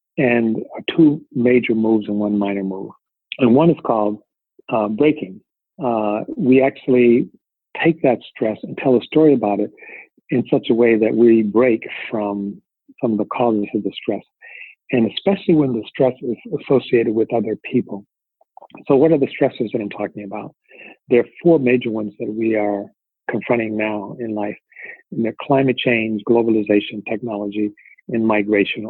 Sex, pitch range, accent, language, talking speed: male, 105-130 Hz, American, English, 165 wpm